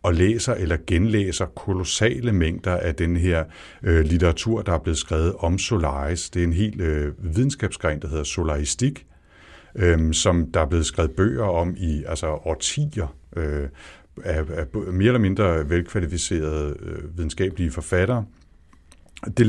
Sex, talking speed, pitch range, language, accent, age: male, 150 wpm, 80-100 Hz, Danish, native, 60-79